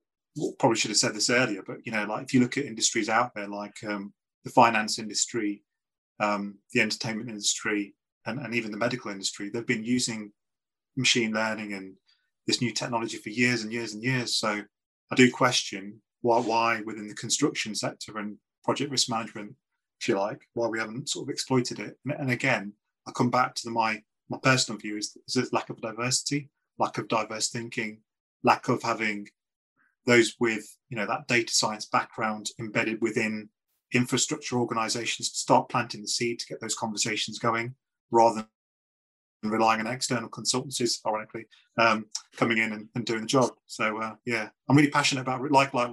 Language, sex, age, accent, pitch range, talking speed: English, male, 30-49, British, 110-125 Hz, 185 wpm